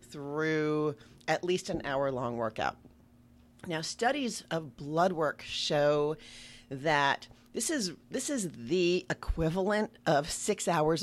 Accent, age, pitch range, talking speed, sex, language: American, 40-59, 135-180 Hz, 125 wpm, female, English